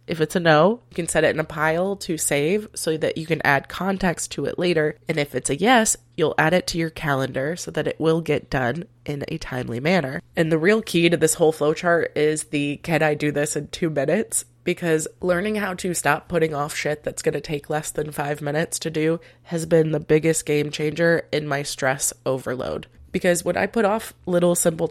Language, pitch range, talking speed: English, 150-180 Hz, 230 wpm